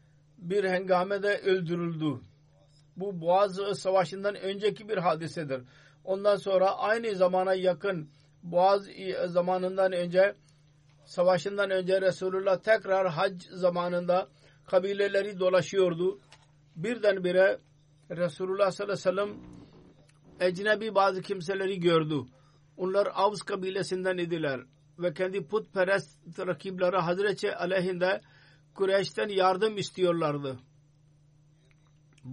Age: 50-69